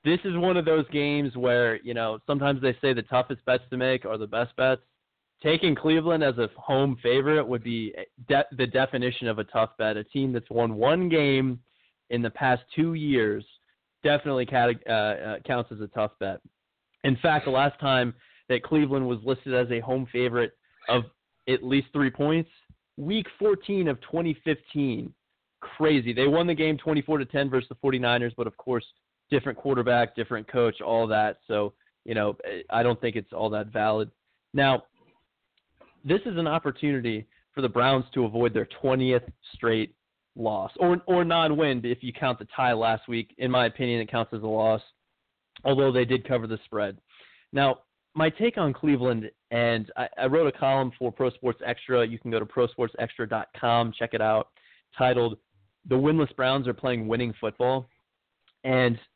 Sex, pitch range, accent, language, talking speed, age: male, 115-140 Hz, American, English, 180 wpm, 20-39